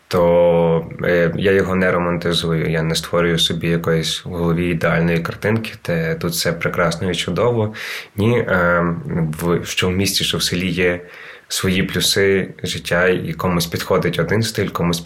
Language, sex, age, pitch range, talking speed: Ukrainian, male, 20-39, 85-105 Hz, 150 wpm